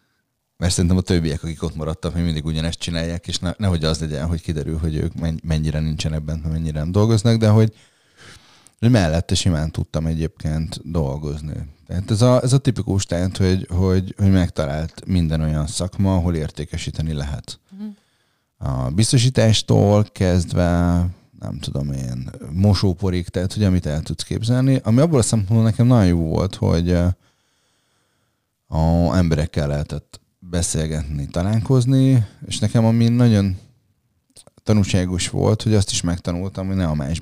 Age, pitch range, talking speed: 30-49, 80-105 Hz, 140 wpm